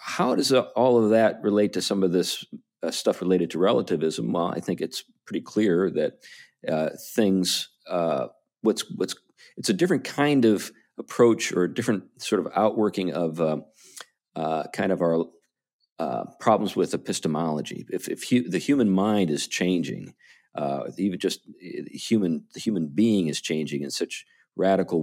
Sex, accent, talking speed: male, American, 165 wpm